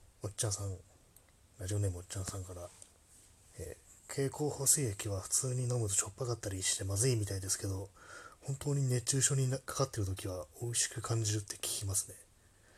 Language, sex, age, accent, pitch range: Japanese, male, 20-39, native, 95-110 Hz